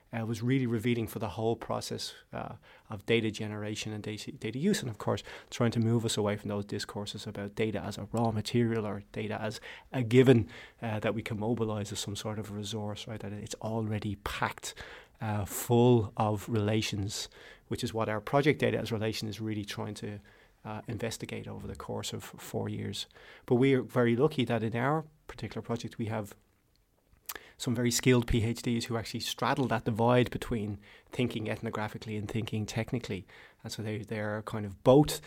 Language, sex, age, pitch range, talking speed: Danish, male, 30-49, 105-120 Hz, 195 wpm